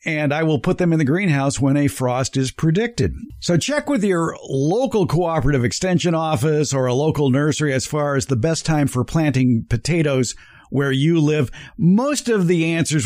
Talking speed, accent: 190 wpm, American